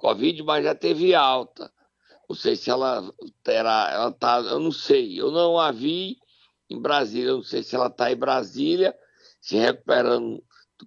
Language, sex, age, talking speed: Portuguese, male, 60-79, 175 wpm